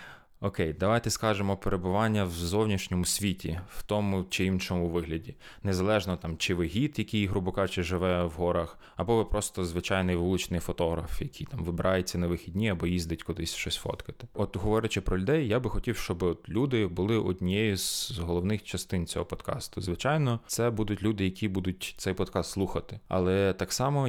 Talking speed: 165 wpm